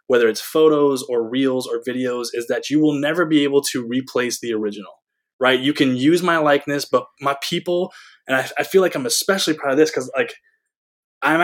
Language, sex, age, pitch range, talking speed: English, male, 20-39, 125-155 Hz, 210 wpm